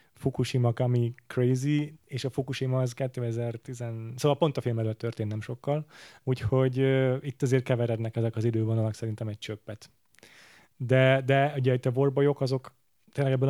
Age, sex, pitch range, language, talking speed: 30-49, male, 110-135 Hz, Hungarian, 160 wpm